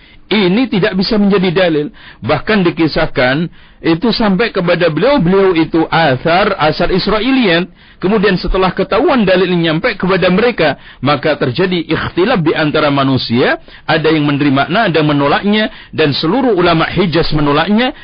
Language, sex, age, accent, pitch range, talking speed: Indonesian, male, 50-69, native, 150-195 Hz, 125 wpm